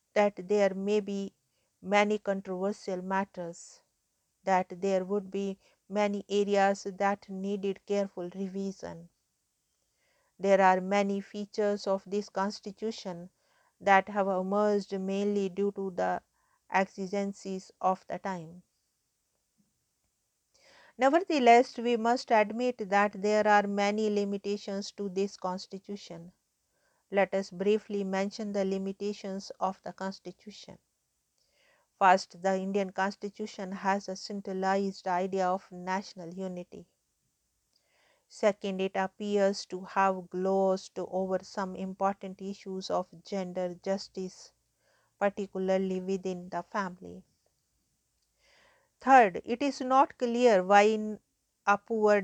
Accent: Indian